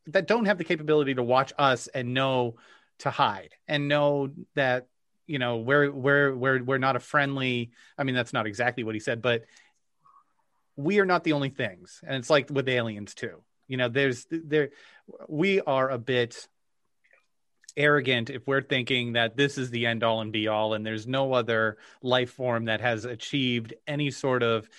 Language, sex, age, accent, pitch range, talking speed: English, male, 30-49, American, 120-145 Hz, 190 wpm